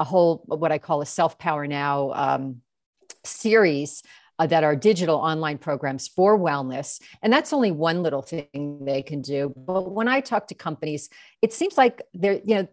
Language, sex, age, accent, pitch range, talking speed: English, female, 40-59, American, 155-205 Hz, 190 wpm